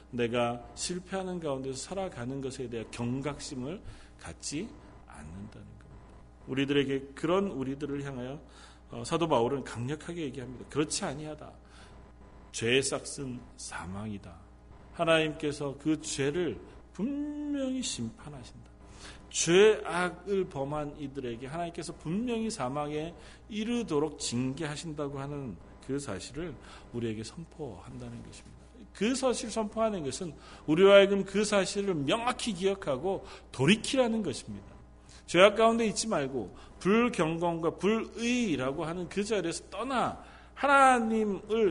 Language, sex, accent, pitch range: Korean, male, native, 135-205 Hz